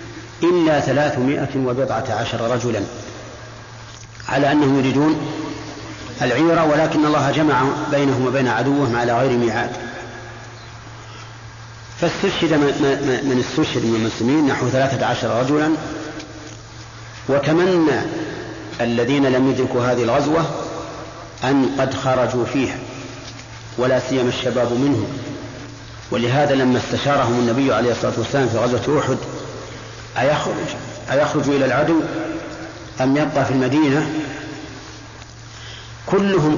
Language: English